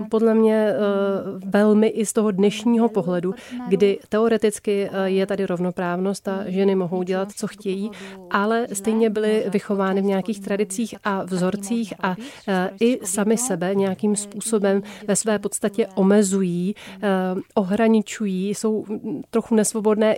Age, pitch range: 40-59, 195-215 Hz